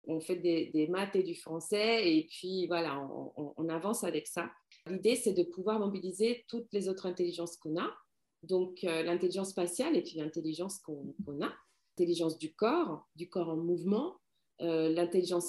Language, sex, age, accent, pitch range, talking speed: French, female, 40-59, French, 170-215 Hz, 180 wpm